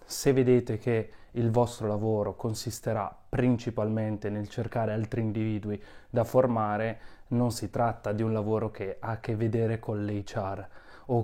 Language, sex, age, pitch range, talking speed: Italian, male, 20-39, 100-115 Hz, 150 wpm